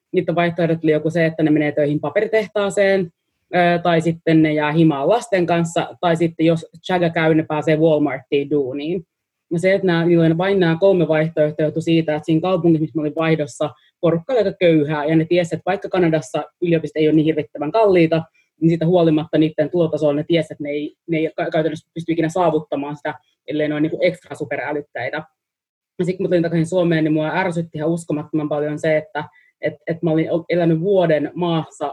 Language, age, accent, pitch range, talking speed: Finnish, 20-39, native, 150-175 Hz, 190 wpm